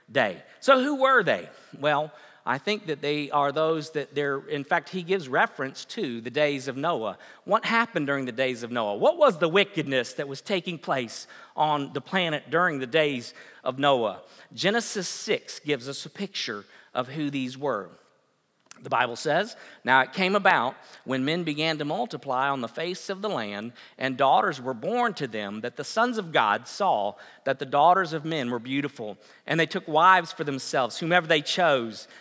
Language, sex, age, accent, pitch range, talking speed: English, male, 50-69, American, 125-170 Hz, 190 wpm